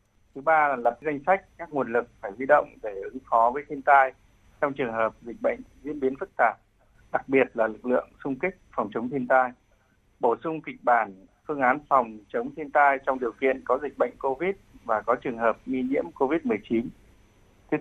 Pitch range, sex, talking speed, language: 115-145 Hz, male, 210 wpm, Vietnamese